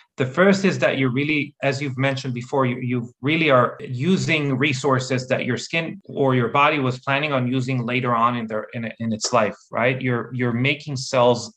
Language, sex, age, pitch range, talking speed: English, male, 30-49, 120-145 Hz, 205 wpm